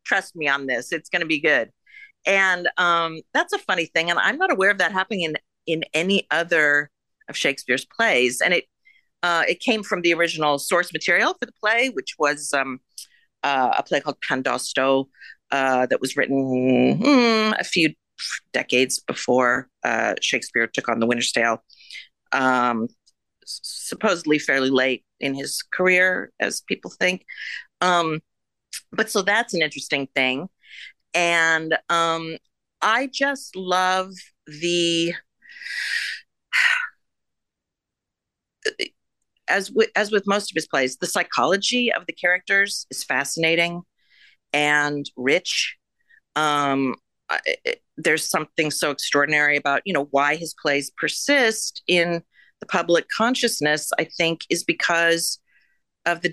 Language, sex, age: English, female, 50-69